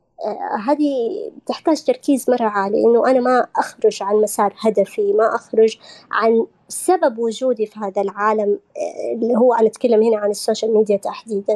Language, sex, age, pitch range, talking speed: Arabic, male, 20-39, 220-295 Hz, 150 wpm